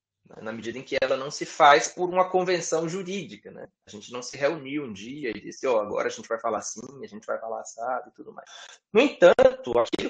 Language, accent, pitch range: Portuguese, Brazilian, 135-205 Hz